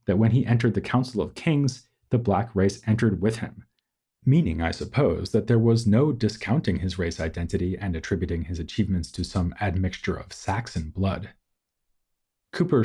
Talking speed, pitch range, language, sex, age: 170 wpm, 90-115 Hz, English, male, 30-49